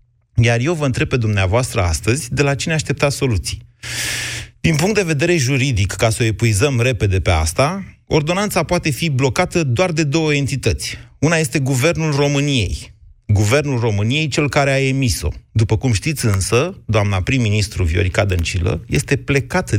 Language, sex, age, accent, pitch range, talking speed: Romanian, male, 30-49, native, 105-135 Hz, 160 wpm